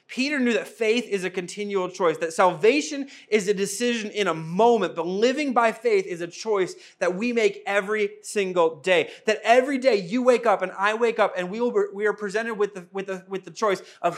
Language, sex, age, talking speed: English, male, 30-49, 225 wpm